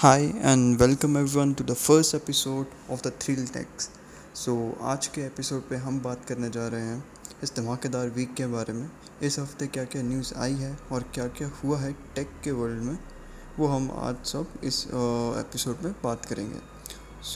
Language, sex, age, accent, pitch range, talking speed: Hindi, male, 20-39, native, 120-140 Hz, 195 wpm